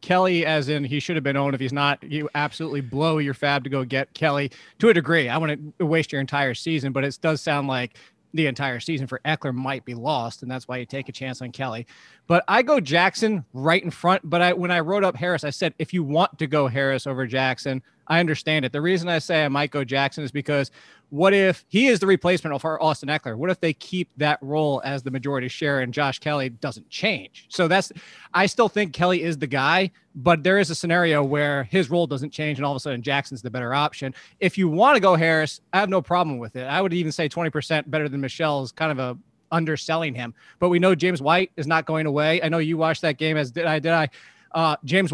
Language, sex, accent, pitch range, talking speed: English, male, American, 140-175 Hz, 250 wpm